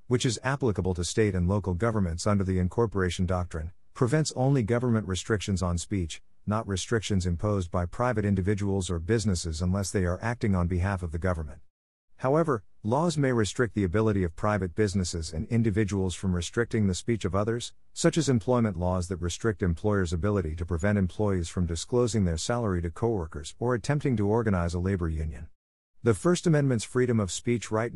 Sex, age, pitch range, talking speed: male, 50-69, 90-115 Hz, 180 wpm